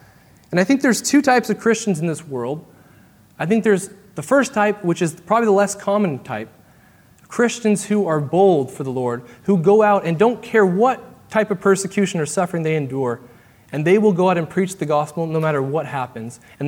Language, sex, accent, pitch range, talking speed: English, male, American, 145-205 Hz, 210 wpm